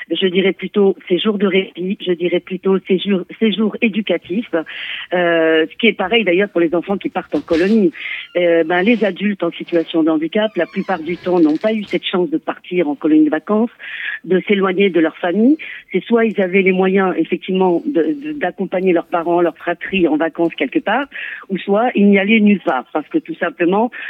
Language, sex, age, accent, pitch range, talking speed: French, female, 50-69, French, 170-200 Hz, 210 wpm